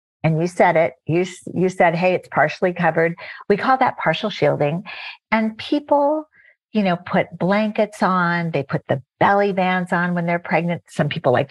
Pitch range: 160-200 Hz